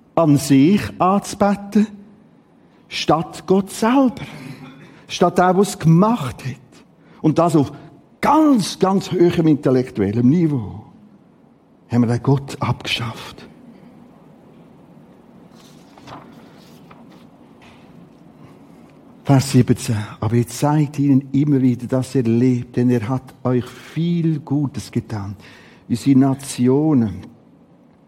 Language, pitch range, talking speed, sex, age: German, 120-170 Hz, 95 wpm, male, 60-79